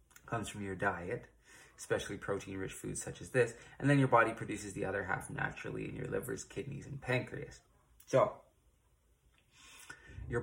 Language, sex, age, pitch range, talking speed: English, male, 20-39, 95-130 Hz, 160 wpm